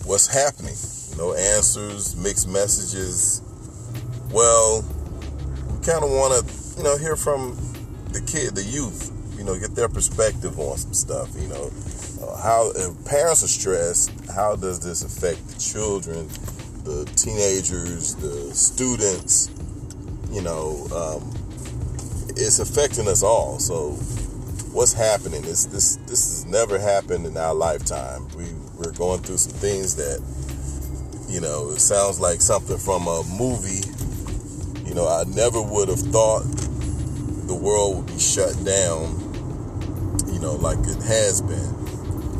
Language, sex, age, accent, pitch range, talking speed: English, male, 40-59, American, 95-115 Hz, 145 wpm